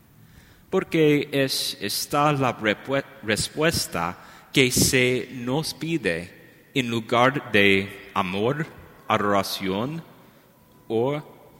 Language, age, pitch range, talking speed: English, 30-49, 105-135 Hz, 70 wpm